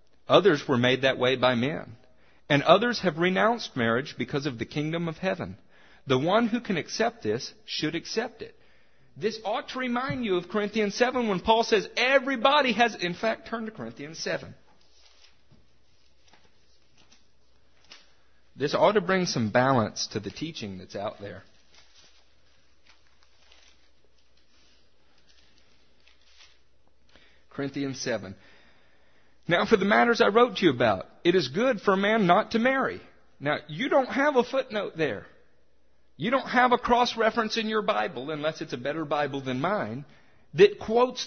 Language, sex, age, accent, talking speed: English, male, 50-69, American, 150 wpm